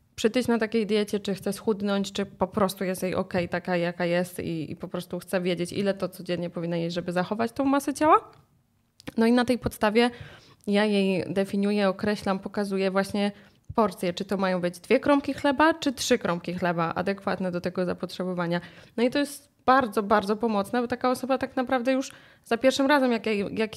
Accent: native